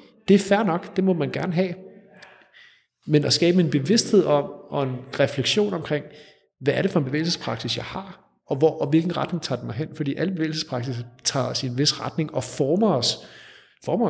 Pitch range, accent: 130-175 Hz, native